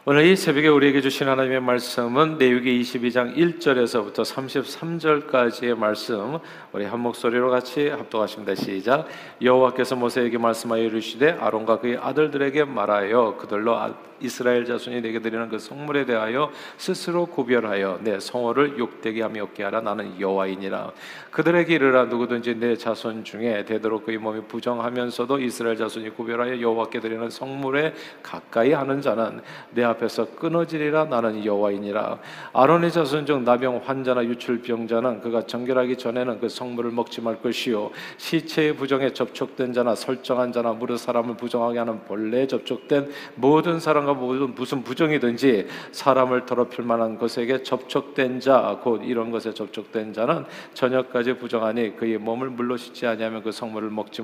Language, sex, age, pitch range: Korean, male, 40-59, 115-135 Hz